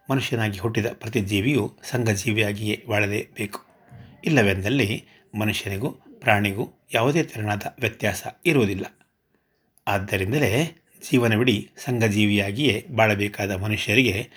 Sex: male